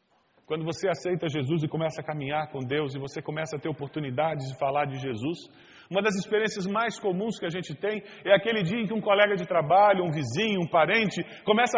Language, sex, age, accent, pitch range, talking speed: Spanish, male, 40-59, Brazilian, 180-280 Hz, 220 wpm